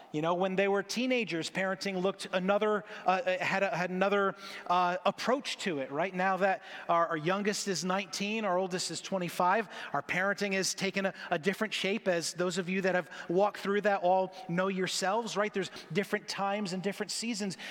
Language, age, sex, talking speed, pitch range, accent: English, 30-49, male, 195 wpm, 175-205 Hz, American